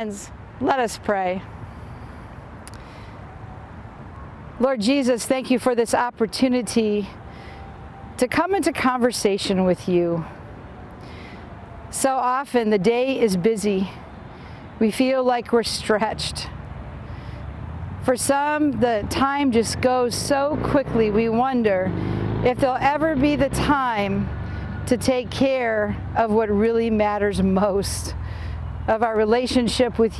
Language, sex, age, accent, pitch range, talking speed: English, female, 50-69, American, 190-250 Hz, 110 wpm